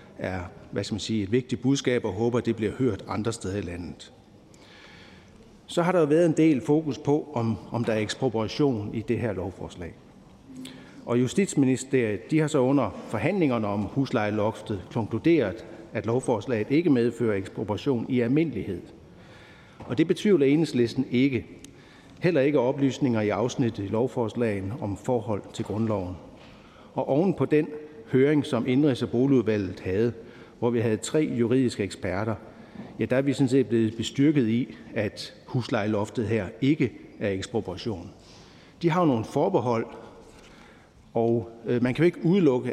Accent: native